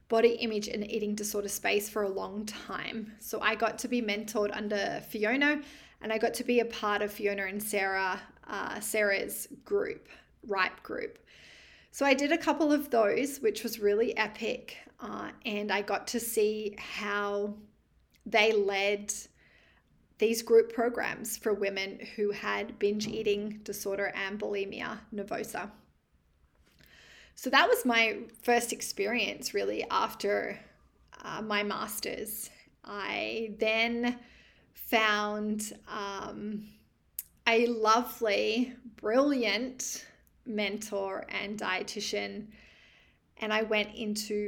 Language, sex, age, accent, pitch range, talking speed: English, female, 20-39, Australian, 205-230 Hz, 125 wpm